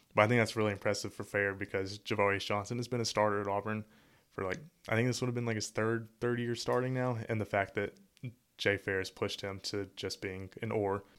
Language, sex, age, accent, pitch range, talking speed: English, male, 20-39, American, 100-110 Hz, 245 wpm